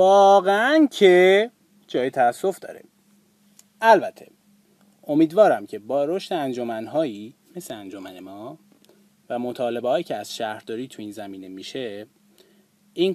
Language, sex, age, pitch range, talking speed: Persian, male, 30-49, 135-200 Hz, 115 wpm